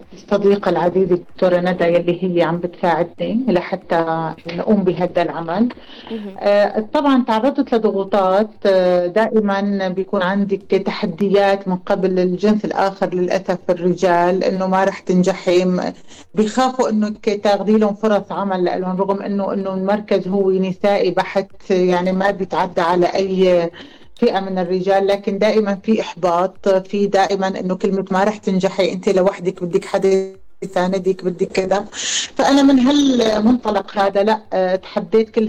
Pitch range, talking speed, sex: 185-210 Hz, 130 wpm, female